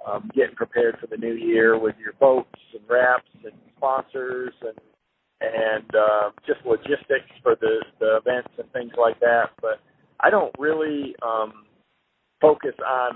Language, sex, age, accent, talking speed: English, male, 50-69, American, 155 wpm